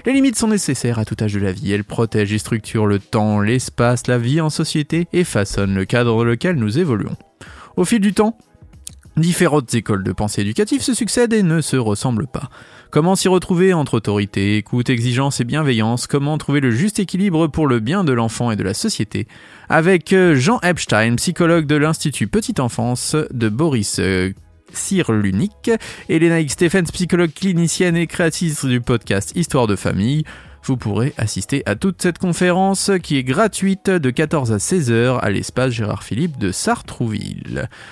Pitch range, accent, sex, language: 110-180 Hz, French, male, French